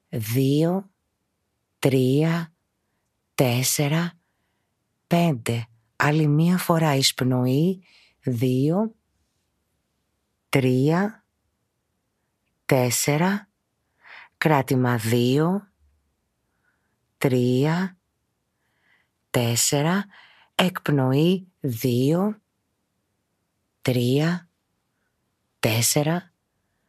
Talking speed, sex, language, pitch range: 40 wpm, female, Greek, 120-155 Hz